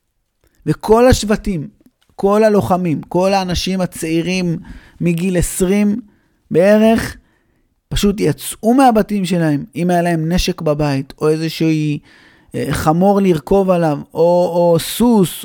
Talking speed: 105 wpm